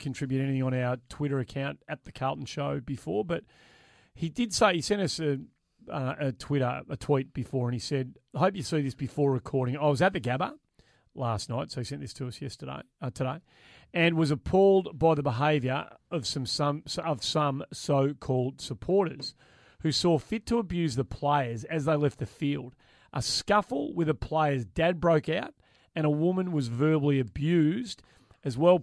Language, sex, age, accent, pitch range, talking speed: English, male, 30-49, Australian, 130-160 Hz, 190 wpm